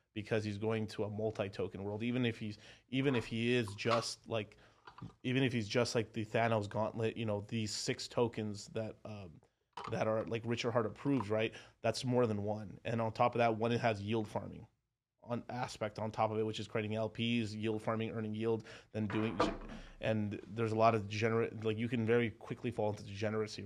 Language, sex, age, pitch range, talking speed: English, male, 30-49, 110-120 Hz, 210 wpm